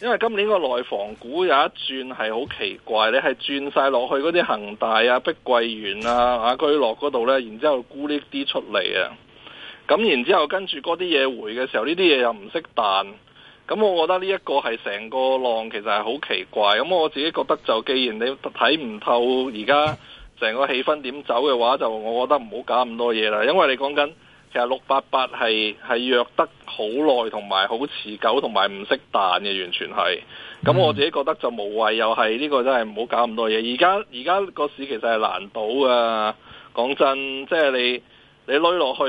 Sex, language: male, Chinese